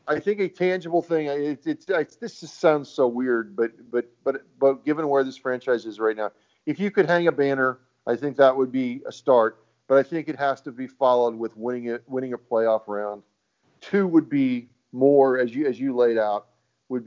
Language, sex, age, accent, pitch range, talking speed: English, male, 40-59, American, 125-155 Hz, 225 wpm